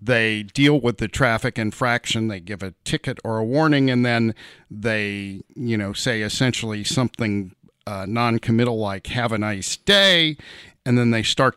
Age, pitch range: 50-69, 110-130 Hz